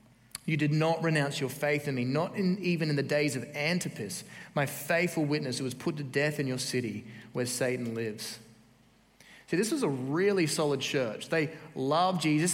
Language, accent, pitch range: English, Australian, 135-175 Hz